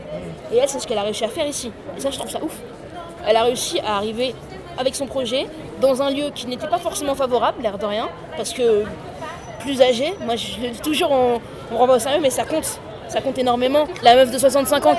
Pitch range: 235-290 Hz